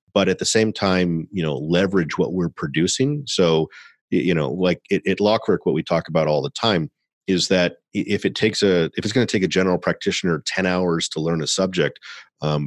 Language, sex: English, male